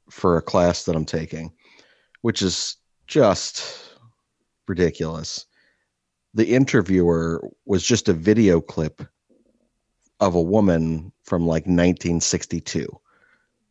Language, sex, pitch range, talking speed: English, male, 85-105 Hz, 100 wpm